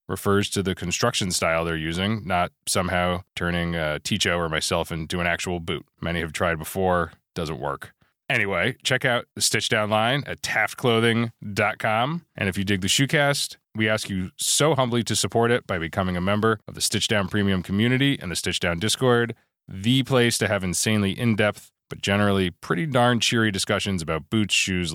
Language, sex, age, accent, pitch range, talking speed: English, male, 20-39, American, 90-115 Hz, 180 wpm